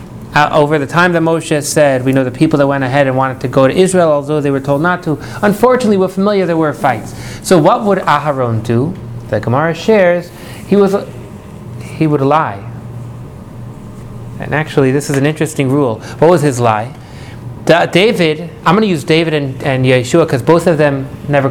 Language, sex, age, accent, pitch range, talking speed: English, male, 30-49, American, 125-165 Hz, 195 wpm